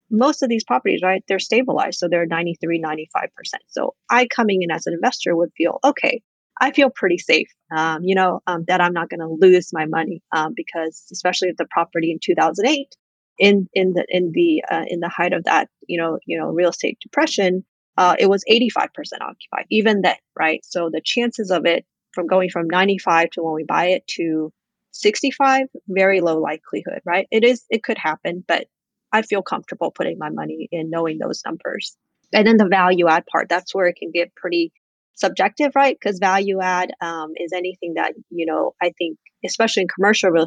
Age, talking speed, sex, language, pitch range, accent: 30-49, 205 wpm, female, English, 170-215 Hz, American